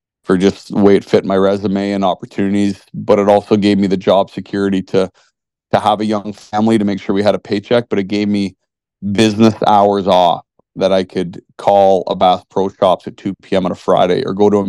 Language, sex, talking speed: English, male, 230 wpm